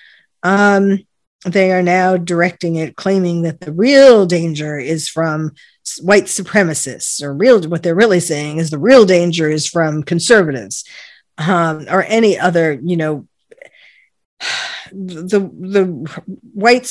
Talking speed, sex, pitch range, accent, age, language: 130 wpm, female, 170-220 Hz, American, 50-69, English